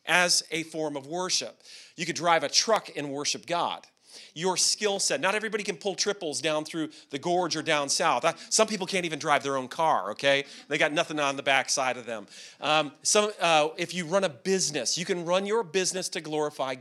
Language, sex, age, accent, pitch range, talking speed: English, male, 40-59, American, 150-195 Hz, 205 wpm